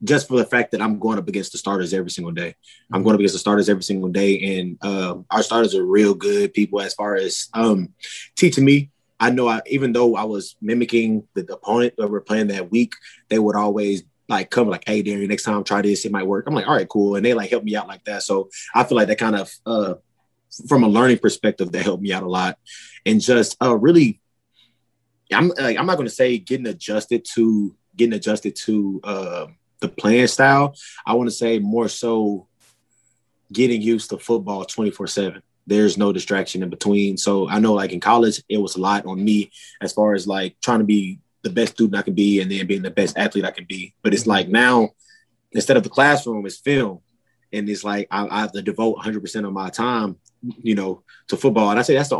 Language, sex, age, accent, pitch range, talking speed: English, male, 20-39, American, 100-120 Hz, 225 wpm